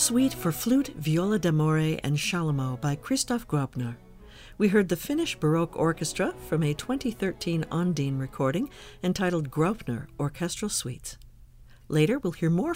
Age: 50-69